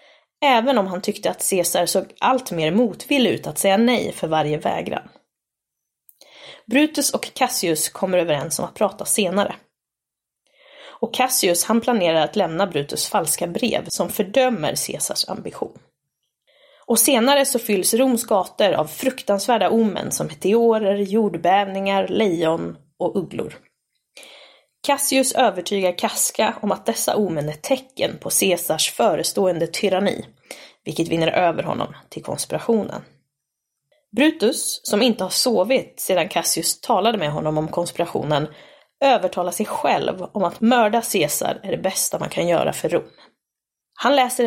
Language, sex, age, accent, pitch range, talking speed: Swedish, female, 20-39, native, 180-250 Hz, 135 wpm